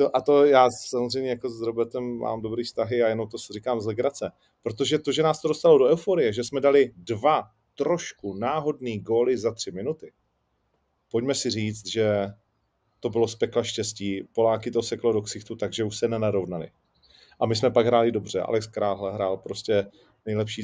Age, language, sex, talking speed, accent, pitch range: 30-49, Czech, male, 185 wpm, native, 100-130 Hz